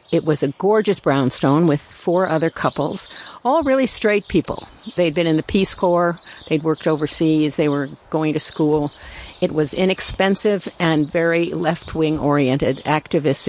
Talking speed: 155 wpm